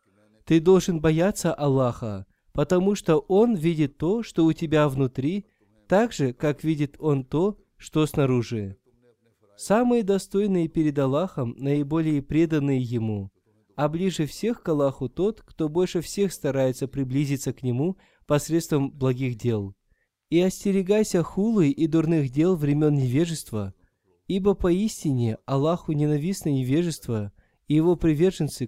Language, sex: Russian, male